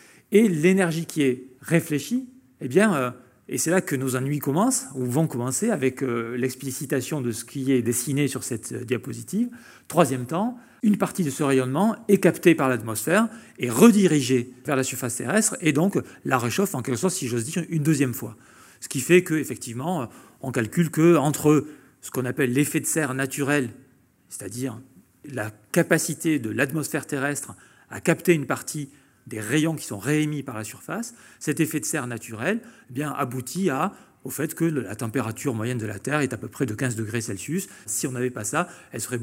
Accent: French